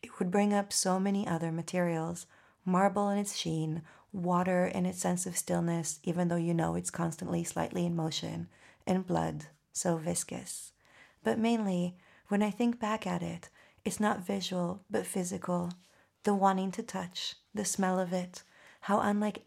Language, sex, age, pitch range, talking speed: English, female, 30-49, 175-210 Hz, 165 wpm